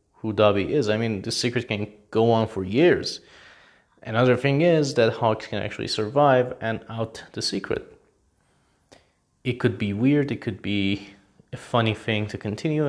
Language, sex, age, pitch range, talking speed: English, male, 30-49, 110-155 Hz, 170 wpm